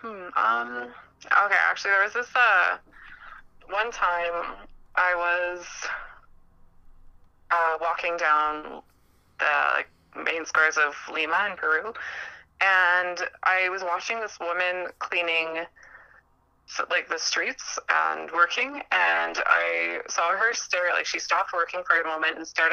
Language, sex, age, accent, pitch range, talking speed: English, female, 20-39, American, 155-195 Hz, 125 wpm